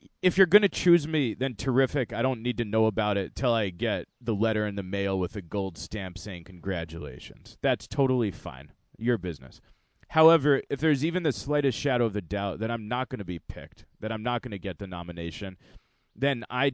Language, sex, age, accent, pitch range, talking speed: English, male, 30-49, American, 100-130 Hz, 220 wpm